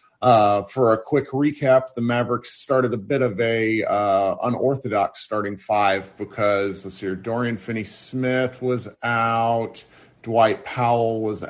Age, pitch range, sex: 40-59, 95-125 Hz, male